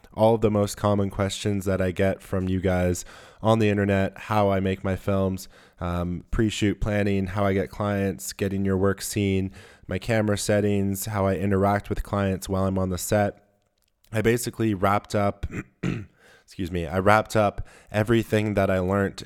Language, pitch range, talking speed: English, 90-100 Hz, 180 wpm